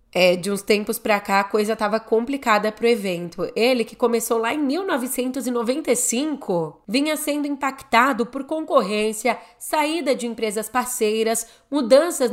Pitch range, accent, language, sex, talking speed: 220-275 Hz, Brazilian, Portuguese, female, 140 wpm